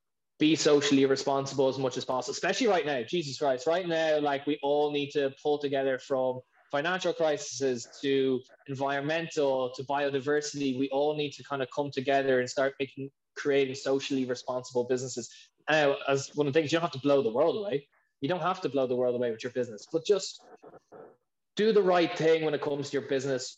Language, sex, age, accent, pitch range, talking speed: English, male, 20-39, Irish, 135-150 Hz, 205 wpm